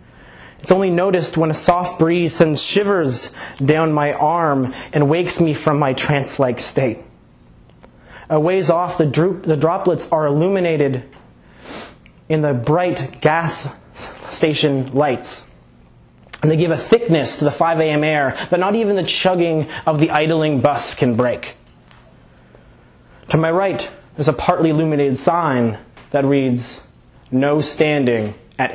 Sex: male